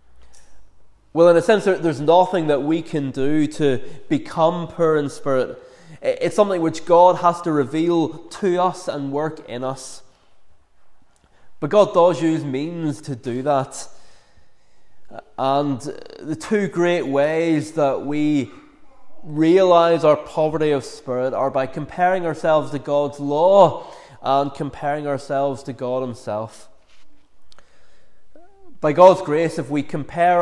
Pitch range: 135-165 Hz